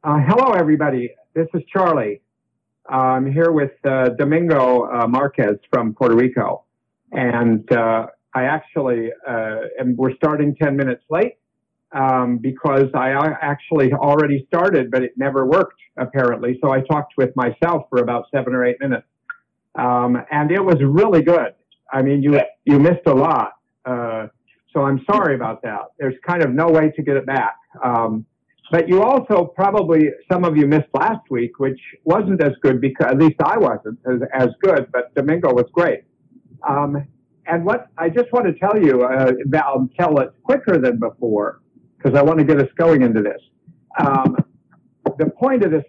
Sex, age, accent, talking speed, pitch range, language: male, 50-69, American, 175 wpm, 125-165 Hz, English